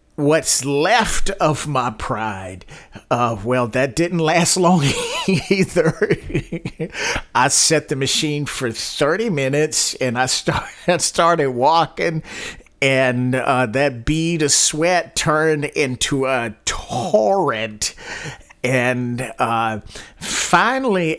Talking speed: 105 wpm